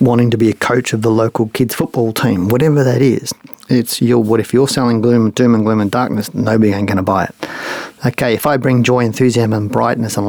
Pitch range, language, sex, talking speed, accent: 105-125 Hz, English, male, 240 wpm, Australian